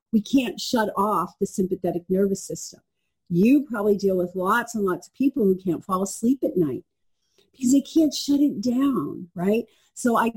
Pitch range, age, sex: 175-230 Hz, 40-59, female